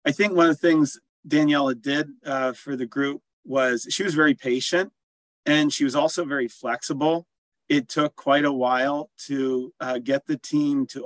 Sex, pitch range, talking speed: male, 120-150 Hz, 185 wpm